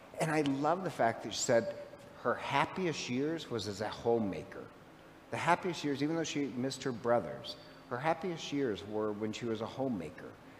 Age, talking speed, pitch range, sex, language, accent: 50-69, 185 wpm, 115-145 Hz, male, English, American